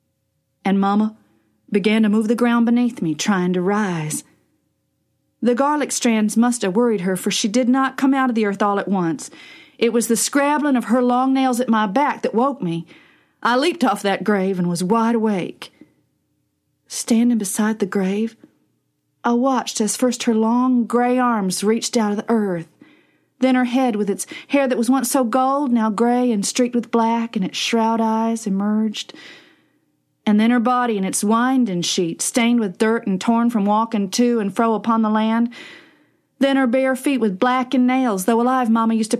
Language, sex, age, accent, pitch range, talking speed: English, female, 40-59, American, 210-255 Hz, 195 wpm